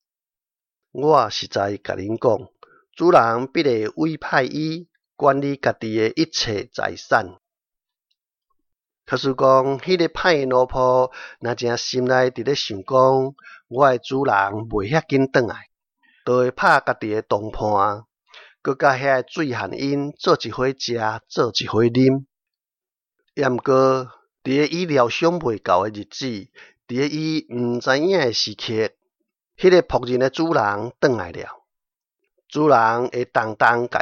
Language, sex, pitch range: Chinese, male, 115-150 Hz